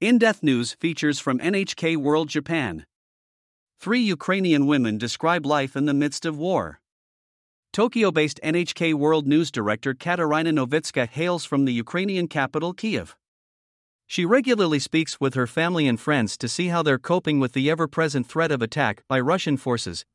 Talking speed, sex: 155 wpm, male